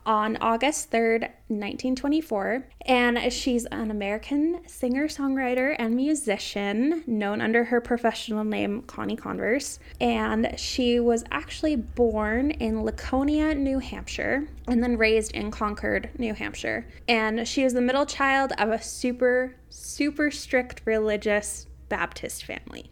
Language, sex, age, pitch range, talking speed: English, female, 10-29, 210-260 Hz, 130 wpm